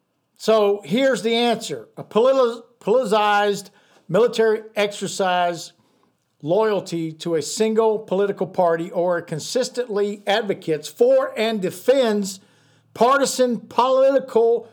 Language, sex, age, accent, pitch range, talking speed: English, male, 50-69, American, 175-225 Hz, 90 wpm